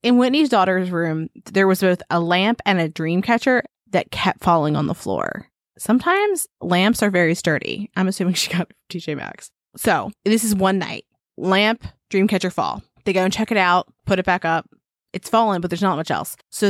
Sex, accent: female, American